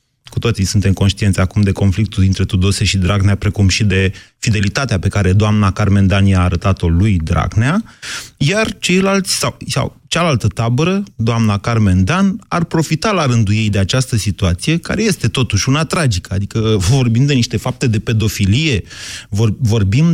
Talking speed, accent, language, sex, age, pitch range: 165 wpm, native, Romanian, male, 30-49, 100-135 Hz